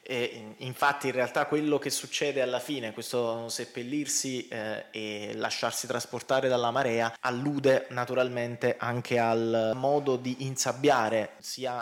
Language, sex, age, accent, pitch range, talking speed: Italian, male, 20-39, native, 115-135 Hz, 125 wpm